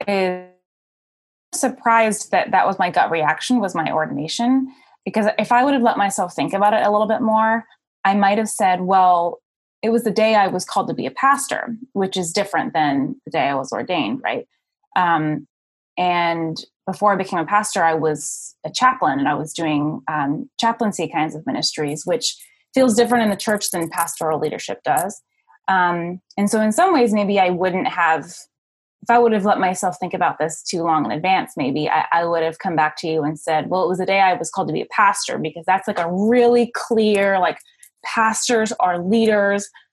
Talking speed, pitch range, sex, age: 205 wpm, 175-225 Hz, female, 20-39